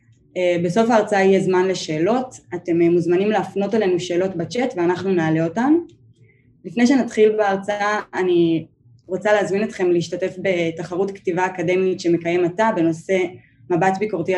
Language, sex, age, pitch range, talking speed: Hebrew, female, 20-39, 170-200 Hz, 125 wpm